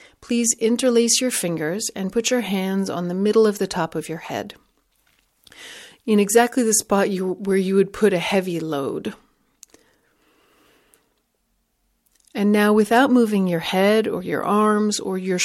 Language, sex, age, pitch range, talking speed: English, female, 40-59, 180-215 Hz, 150 wpm